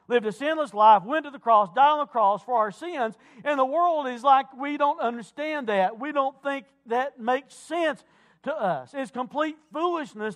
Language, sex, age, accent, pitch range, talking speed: English, male, 50-69, American, 175-260 Hz, 205 wpm